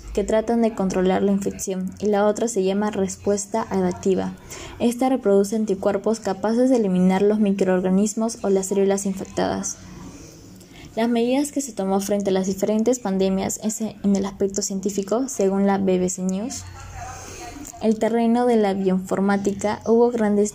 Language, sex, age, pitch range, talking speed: Spanish, female, 20-39, 190-215 Hz, 150 wpm